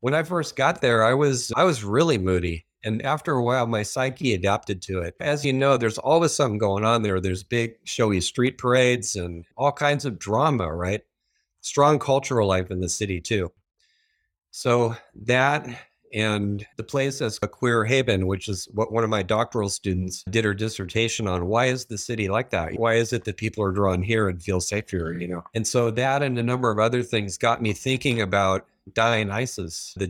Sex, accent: male, American